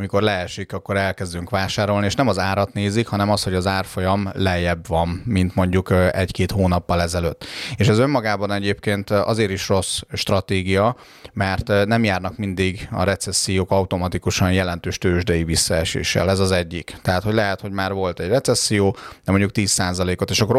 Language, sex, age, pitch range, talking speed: Hungarian, male, 30-49, 95-105 Hz, 160 wpm